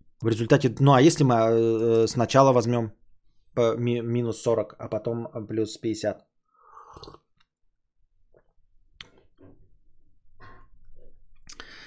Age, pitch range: 20-39, 110-165 Hz